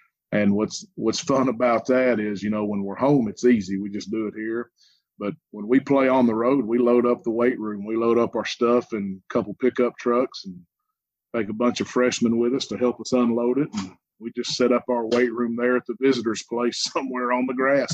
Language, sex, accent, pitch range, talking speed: English, male, American, 115-135 Hz, 240 wpm